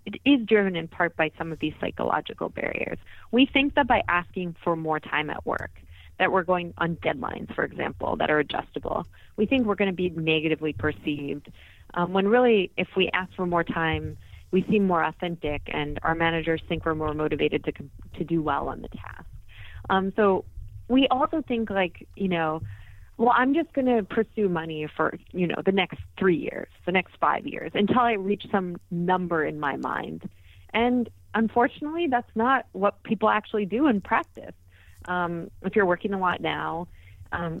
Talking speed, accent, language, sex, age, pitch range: 190 wpm, American, English, female, 30-49, 155-200 Hz